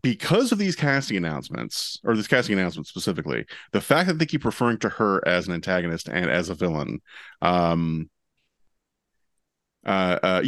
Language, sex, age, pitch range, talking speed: English, male, 30-49, 85-110 Hz, 160 wpm